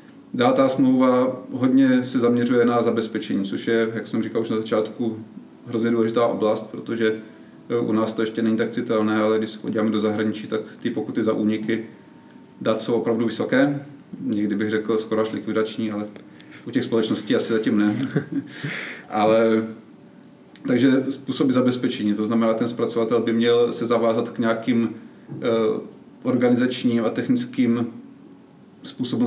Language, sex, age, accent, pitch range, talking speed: Czech, male, 30-49, native, 110-125 Hz, 145 wpm